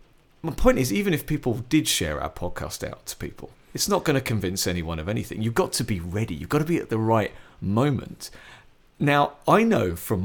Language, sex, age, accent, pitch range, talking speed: English, male, 40-59, British, 90-130 Hz, 225 wpm